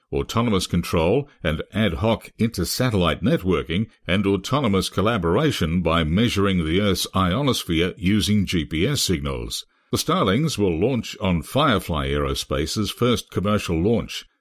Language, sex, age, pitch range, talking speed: English, male, 60-79, 80-110 Hz, 115 wpm